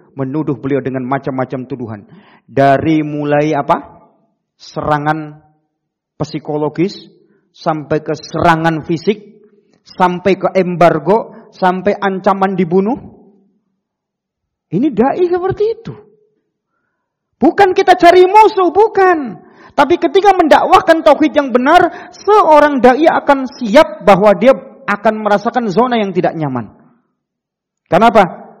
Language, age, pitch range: Indonesian, 40-59, 155-225 Hz